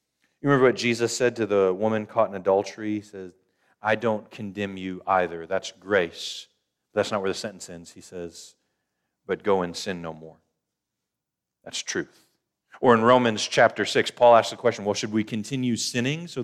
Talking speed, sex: 185 wpm, male